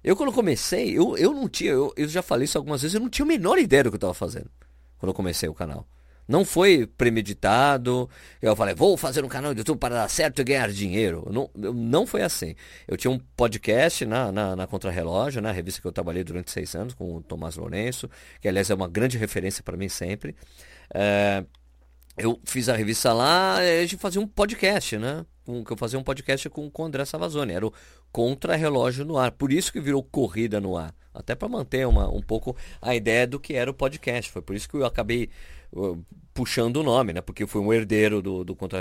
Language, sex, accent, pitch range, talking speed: Portuguese, male, Brazilian, 95-130 Hz, 230 wpm